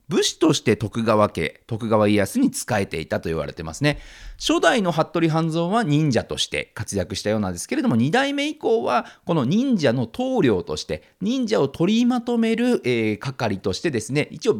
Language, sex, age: Japanese, male, 40-59